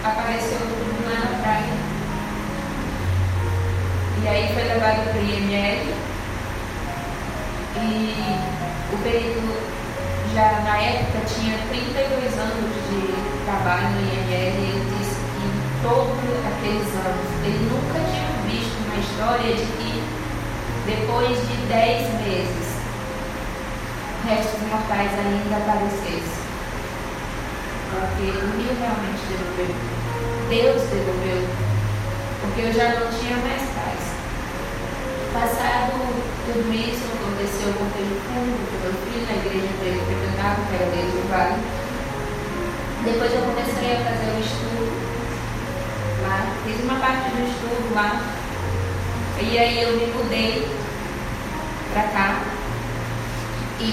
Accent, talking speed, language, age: Brazilian, 120 wpm, Portuguese, 20-39